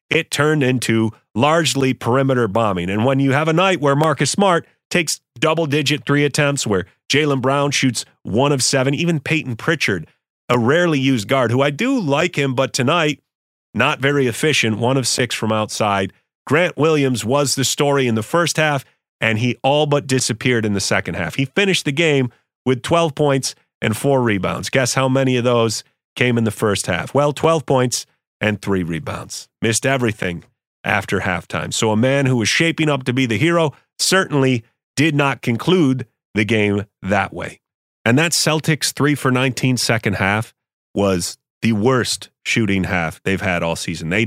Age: 30-49